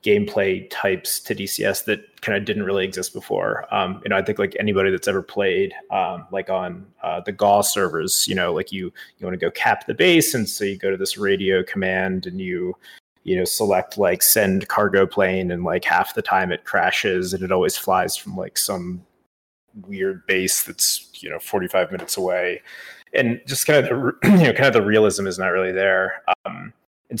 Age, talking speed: 20-39, 210 wpm